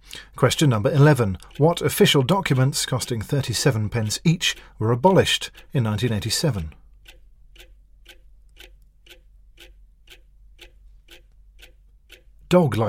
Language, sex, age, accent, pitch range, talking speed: English, male, 40-59, British, 110-155 Hz, 65 wpm